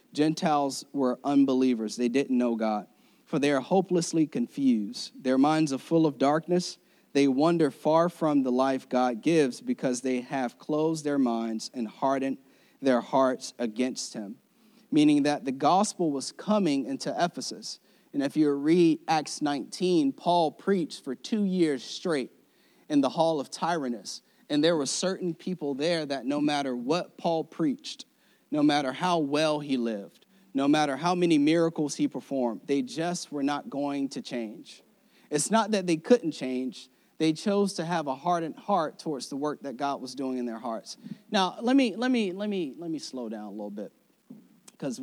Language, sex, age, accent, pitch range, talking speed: English, male, 30-49, American, 130-180 Hz, 175 wpm